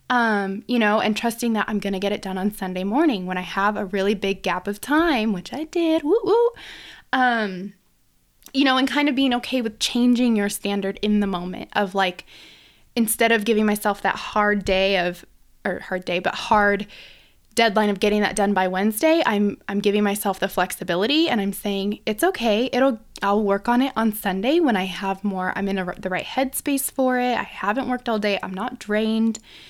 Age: 20-39